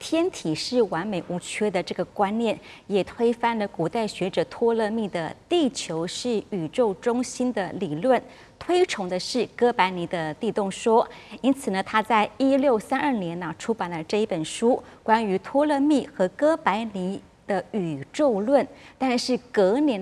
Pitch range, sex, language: 185-250 Hz, female, Chinese